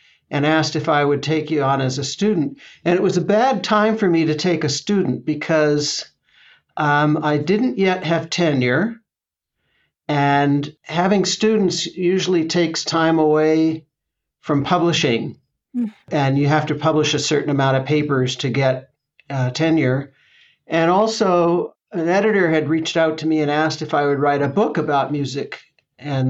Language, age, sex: English, 60-79, male